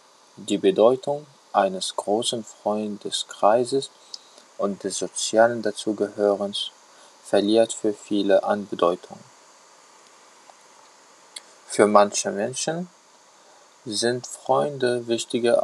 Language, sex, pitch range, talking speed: German, male, 105-130 Hz, 75 wpm